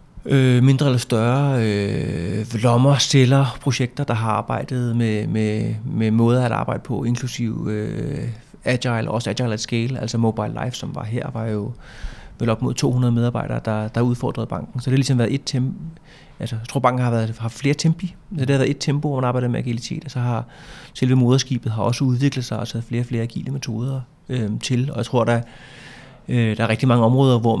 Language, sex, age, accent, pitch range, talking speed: Danish, male, 30-49, native, 115-130 Hz, 215 wpm